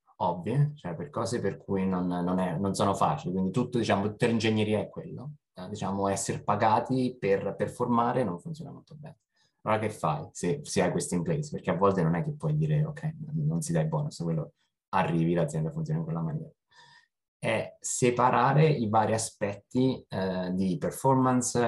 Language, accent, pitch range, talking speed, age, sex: Italian, native, 90-125 Hz, 185 wpm, 20-39, male